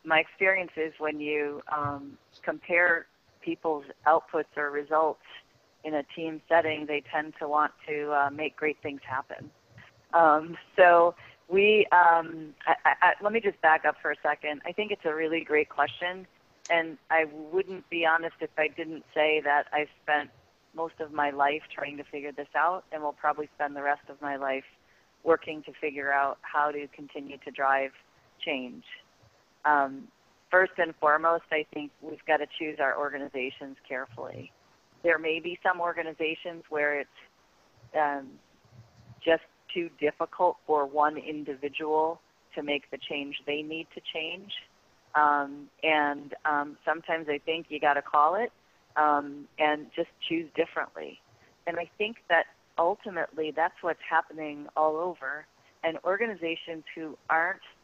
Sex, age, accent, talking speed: female, 30-49, American, 160 wpm